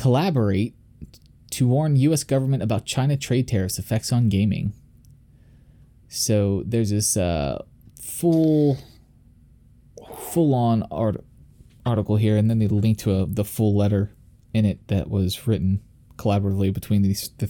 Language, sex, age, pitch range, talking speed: English, male, 20-39, 105-130 Hz, 135 wpm